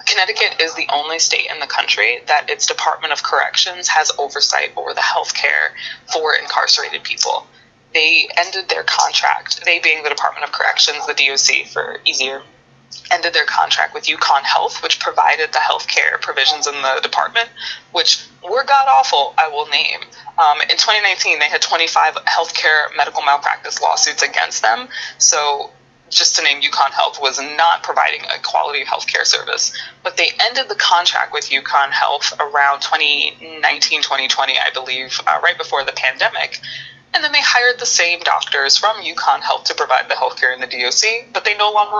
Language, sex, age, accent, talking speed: English, female, 20-39, American, 175 wpm